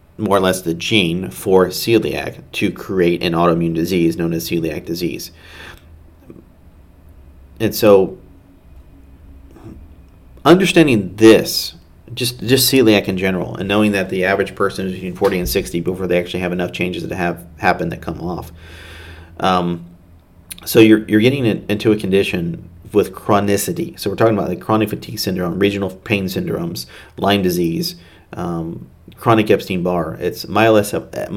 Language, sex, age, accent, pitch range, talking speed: English, male, 40-59, American, 85-100 Hz, 145 wpm